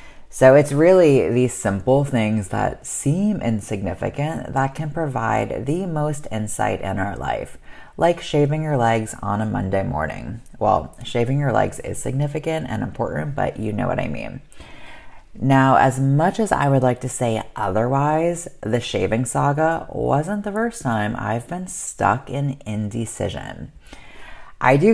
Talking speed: 155 wpm